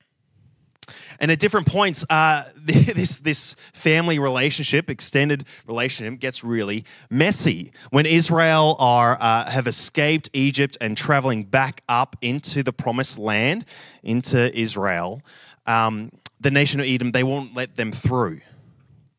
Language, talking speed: English, 130 wpm